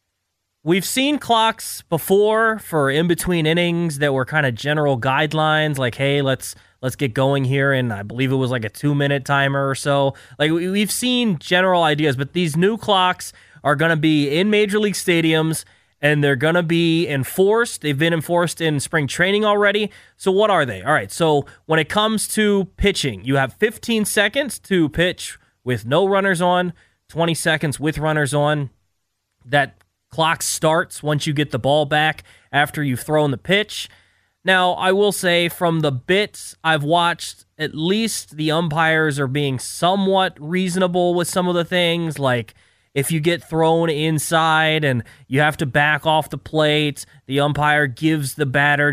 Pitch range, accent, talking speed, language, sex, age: 140-175 Hz, American, 180 wpm, English, male, 20-39